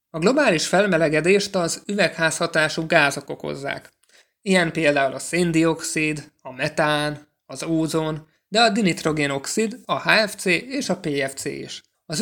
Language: Hungarian